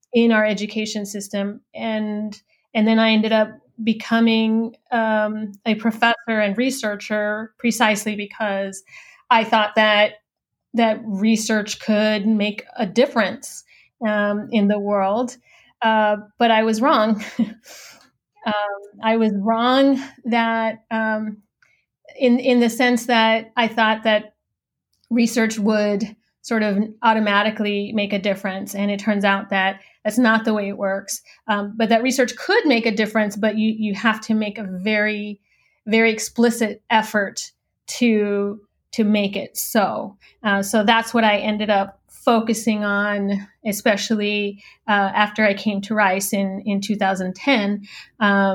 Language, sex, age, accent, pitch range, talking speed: English, female, 30-49, American, 205-225 Hz, 140 wpm